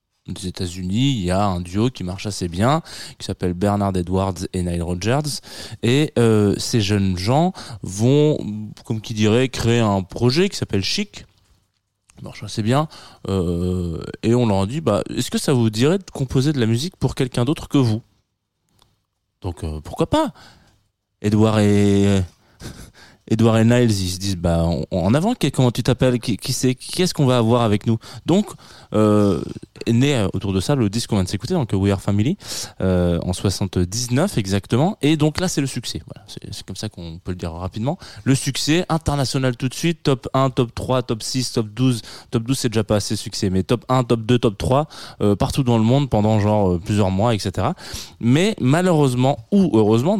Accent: French